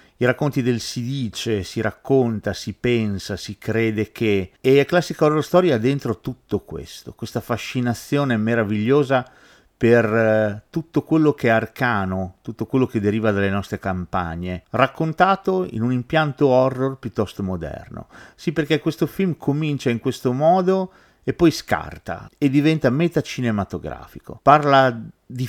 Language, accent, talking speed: Italian, native, 140 wpm